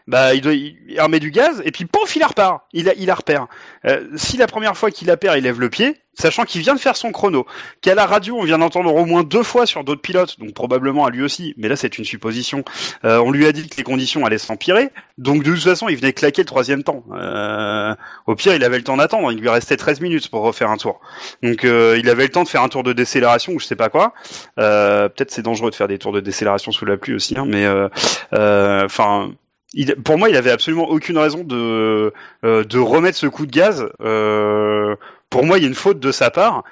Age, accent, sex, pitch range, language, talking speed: 30-49, French, male, 115-185 Hz, French, 255 wpm